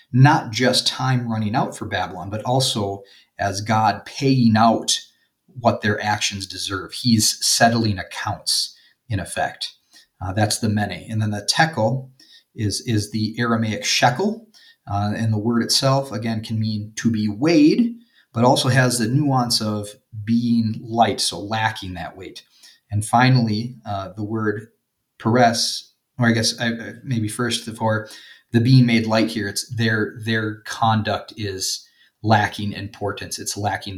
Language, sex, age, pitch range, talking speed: English, male, 30-49, 105-120 Hz, 150 wpm